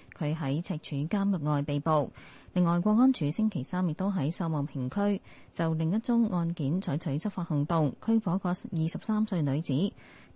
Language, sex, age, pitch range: Chinese, female, 30-49, 150-205 Hz